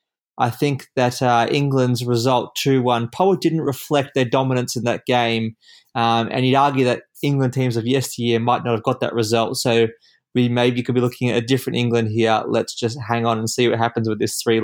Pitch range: 120-145 Hz